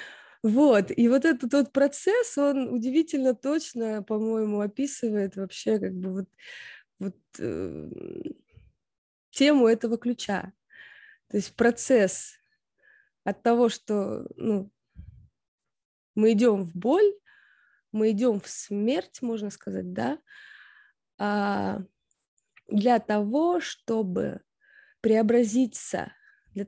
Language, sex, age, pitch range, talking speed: Russian, female, 20-39, 205-260 Hz, 100 wpm